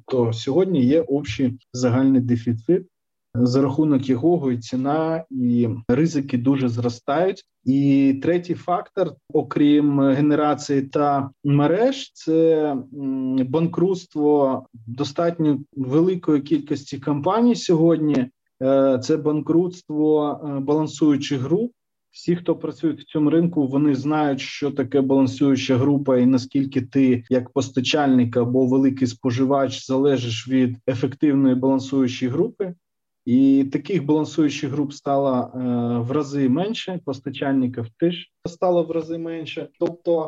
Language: Ukrainian